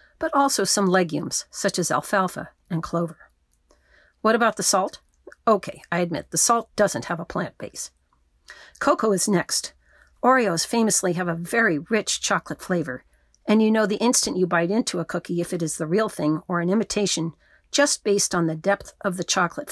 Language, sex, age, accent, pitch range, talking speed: English, female, 50-69, American, 165-215 Hz, 185 wpm